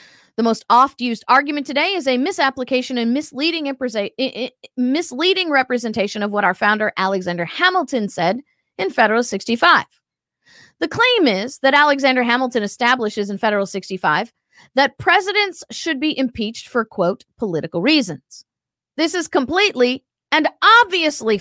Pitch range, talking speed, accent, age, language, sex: 220-315 Hz, 130 wpm, American, 40-59, English, female